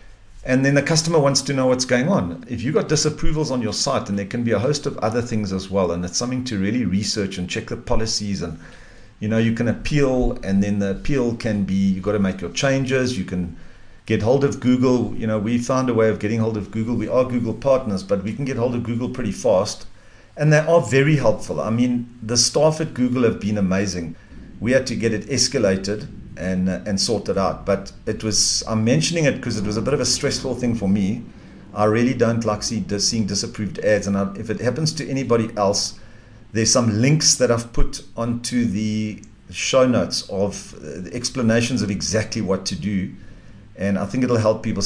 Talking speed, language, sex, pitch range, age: 230 wpm, English, male, 100-130 Hz, 50-69